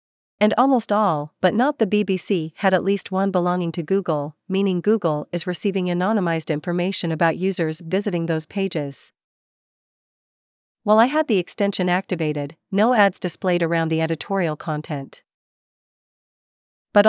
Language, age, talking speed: English, 40-59, 135 wpm